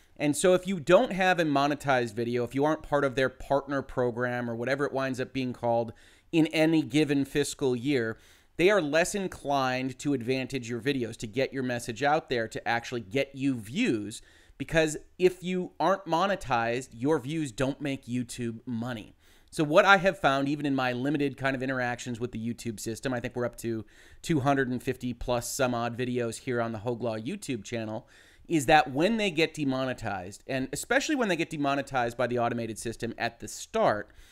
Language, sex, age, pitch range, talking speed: English, male, 30-49, 120-150 Hz, 190 wpm